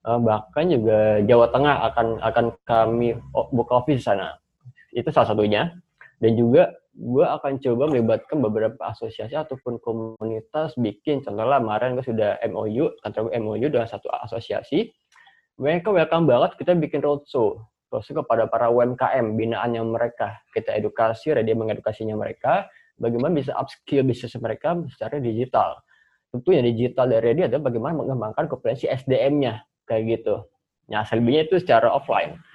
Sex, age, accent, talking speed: male, 20-39, native, 140 wpm